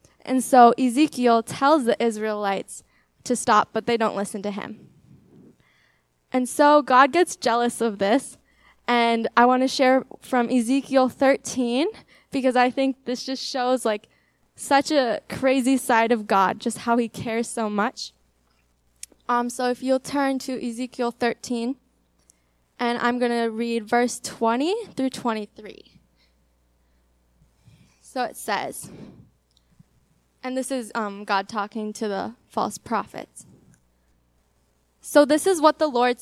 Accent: American